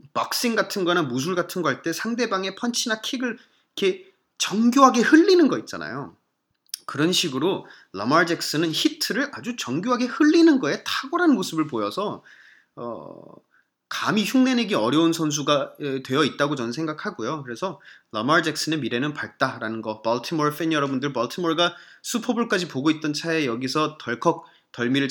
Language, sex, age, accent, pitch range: Korean, male, 30-49, native, 125-185 Hz